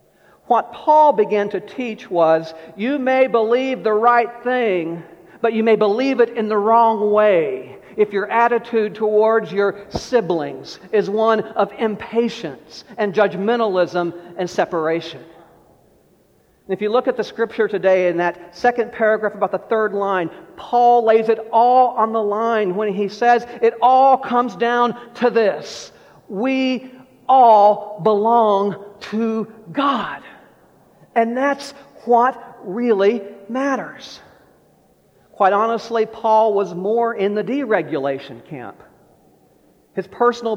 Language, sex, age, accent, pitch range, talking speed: English, male, 40-59, American, 190-235 Hz, 130 wpm